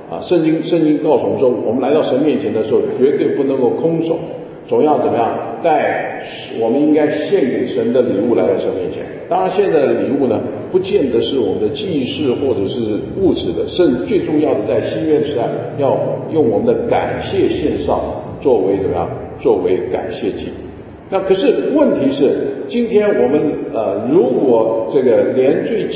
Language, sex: English, male